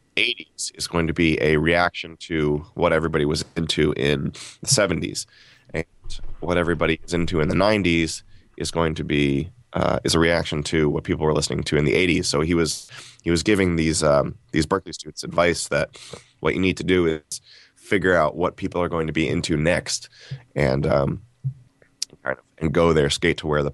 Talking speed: 195 wpm